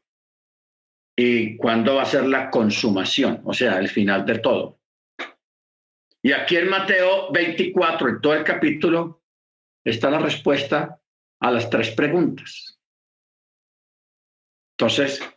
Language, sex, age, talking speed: Spanish, male, 50-69, 115 wpm